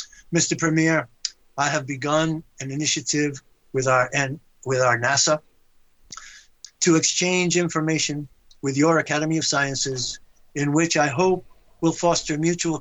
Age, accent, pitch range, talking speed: 50-69, American, 135-160 Hz, 130 wpm